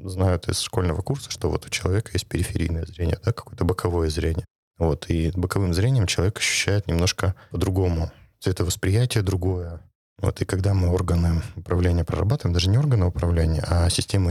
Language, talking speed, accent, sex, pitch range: Russian, 160 wpm, native, male, 85-105 Hz